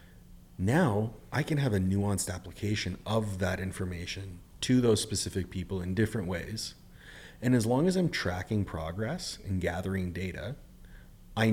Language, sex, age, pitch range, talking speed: English, male, 30-49, 90-110 Hz, 145 wpm